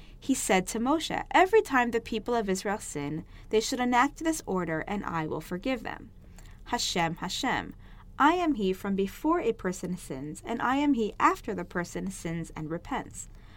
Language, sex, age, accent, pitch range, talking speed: English, female, 20-39, American, 180-270 Hz, 180 wpm